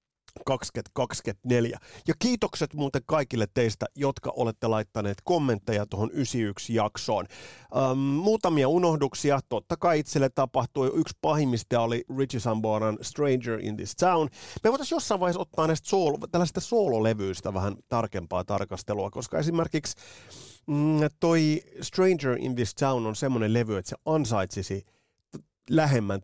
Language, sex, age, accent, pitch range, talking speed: Finnish, male, 30-49, native, 110-155 Hz, 125 wpm